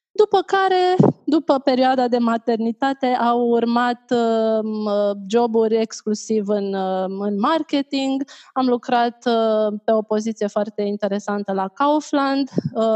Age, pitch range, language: 20-39, 210-255 Hz, Romanian